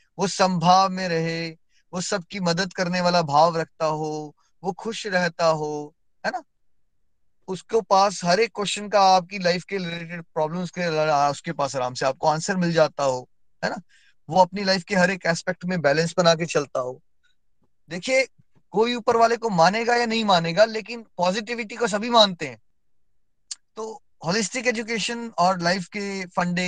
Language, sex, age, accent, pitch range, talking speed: Hindi, male, 20-39, native, 165-220 Hz, 170 wpm